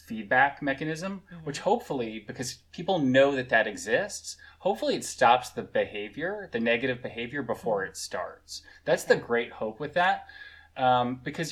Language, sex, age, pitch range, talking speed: English, male, 20-39, 110-145 Hz, 150 wpm